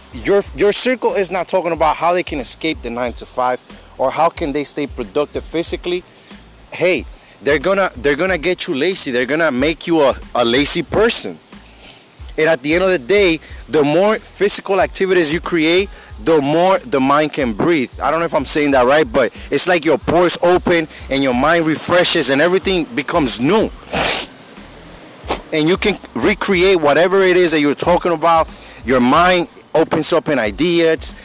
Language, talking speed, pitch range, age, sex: English, 185 wpm, 150-195 Hz, 30-49, male